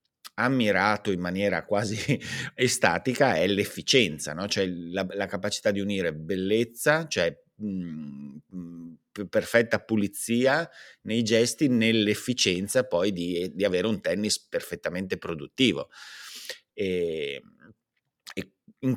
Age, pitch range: 30-49, 95-135 Hz